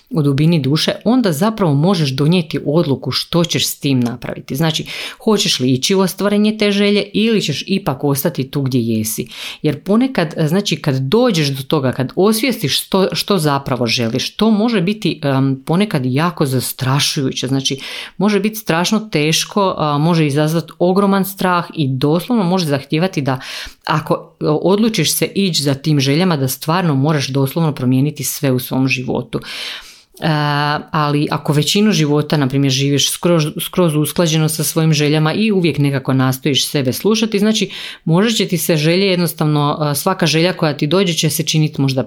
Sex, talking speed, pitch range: female, 160 wpm, 140-185 Hz